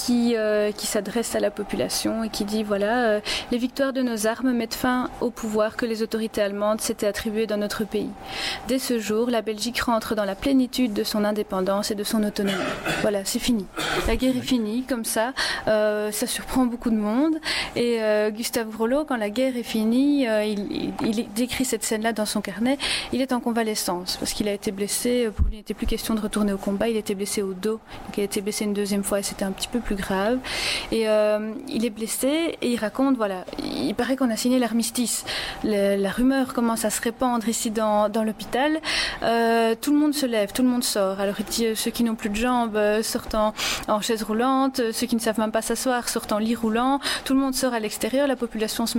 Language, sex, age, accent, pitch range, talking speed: French, female, 30-49, French, 215-250 Hz, 230 wpm